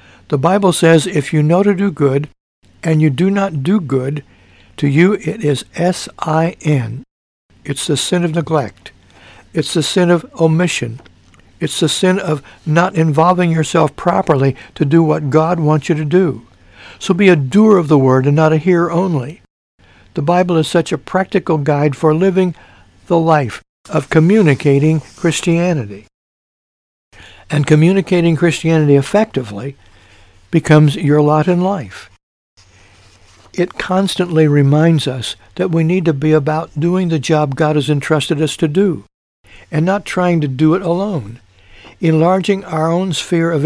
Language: English